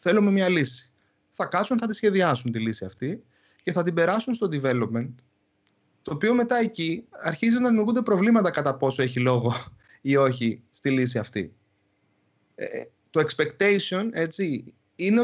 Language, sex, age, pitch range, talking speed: Greek, male, 30-49, 120-180 Hz, 155 wpm